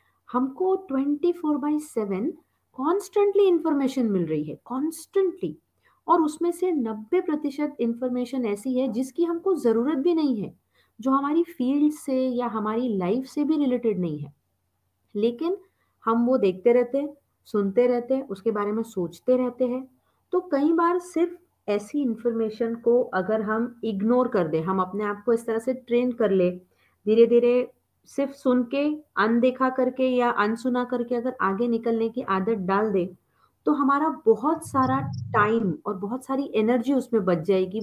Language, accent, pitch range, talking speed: Hindi, native, 195-265 Hz, 160 wpm